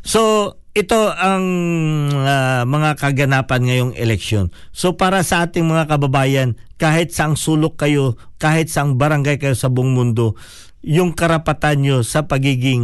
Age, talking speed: 50-69, 140 wpm